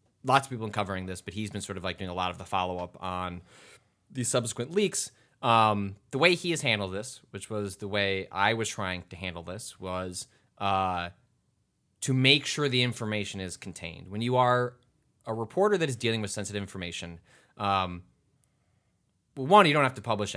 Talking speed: 195 wpm